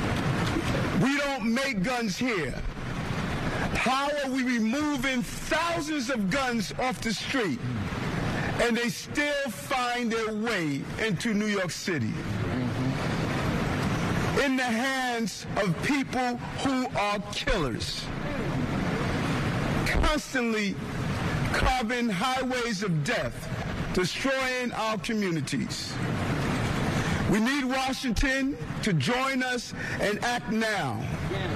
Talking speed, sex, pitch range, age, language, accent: 95 wpm, male, 185-260 Hz, 50-69, English, American